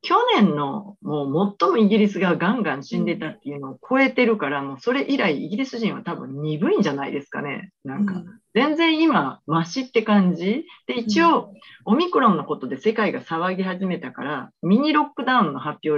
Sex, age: female, 40-59